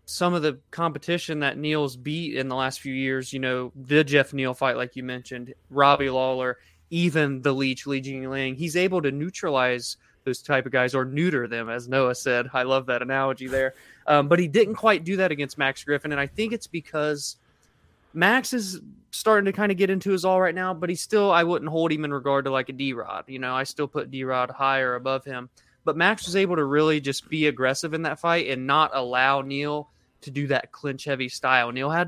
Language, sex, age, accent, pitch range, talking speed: English, male, 20-39, American, 130-165 Hz, 225 wpm